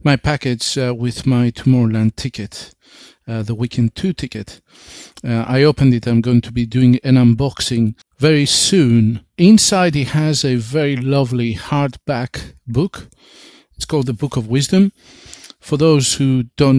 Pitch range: 120-140 Hz